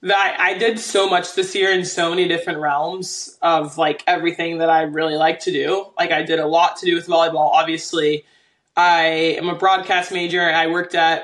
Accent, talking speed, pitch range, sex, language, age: American, 220 wpm, 165-235 Hz, male, English, 20-39